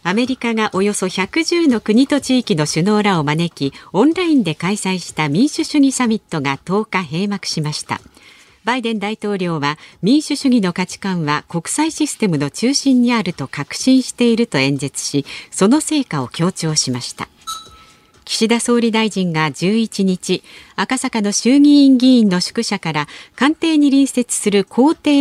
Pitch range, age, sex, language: 160-255 Hz, 40-59, female, Japanese